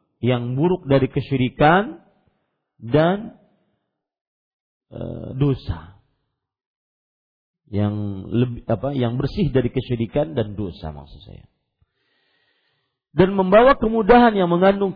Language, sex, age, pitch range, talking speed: Malay, male, 40-59, 105-160 Hz, 90 wpm